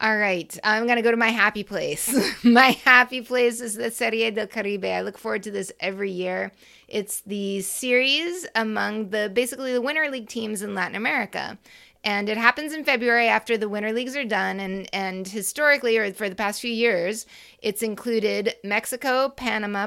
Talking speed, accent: 185 wpm, American